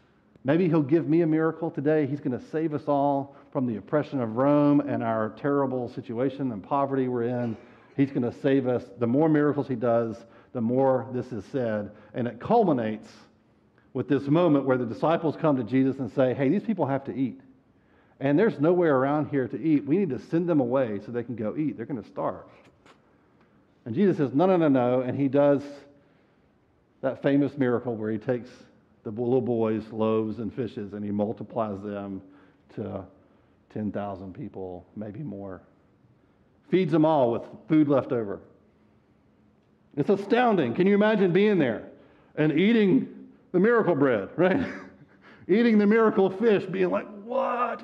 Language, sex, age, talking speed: English, male, 50-69, 175 wpm